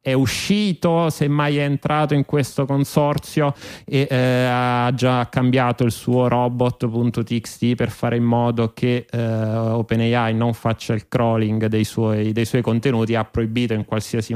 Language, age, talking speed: Italian, 30-49, 155 wpm